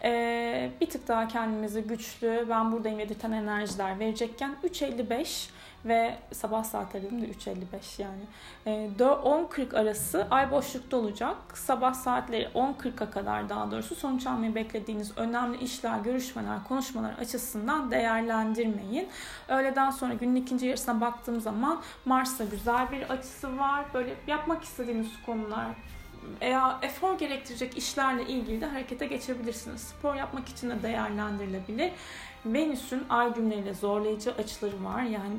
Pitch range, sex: 220-260 Hz, female